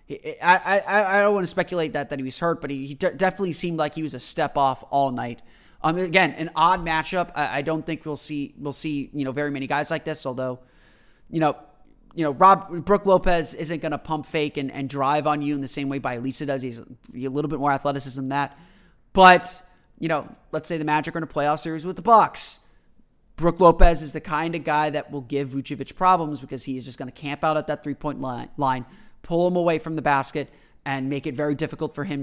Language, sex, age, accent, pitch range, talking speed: English, male, 30-49, American, 140-180 Hz, 245 wpm